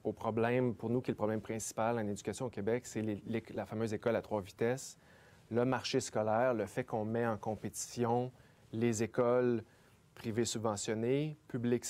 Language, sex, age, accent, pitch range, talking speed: French, male, 30-49, Canadian, 110-130 Hz, 180 wpm